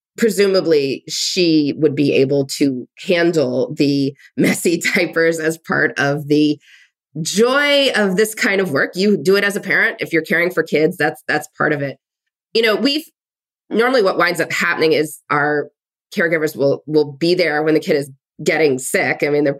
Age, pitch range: 20-39, 145-185 Hz